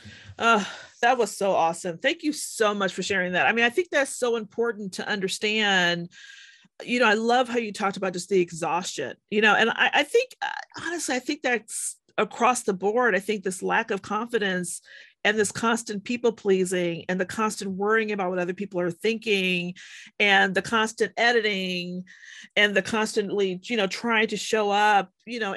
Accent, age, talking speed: American, 40-59, 190 wpm